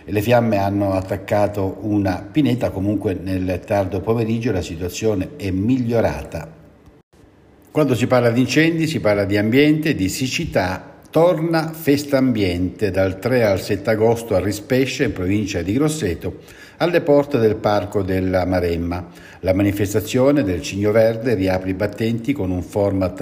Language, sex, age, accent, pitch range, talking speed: Italian, male, 60-79, native, 95-130 Hz, 145 wpm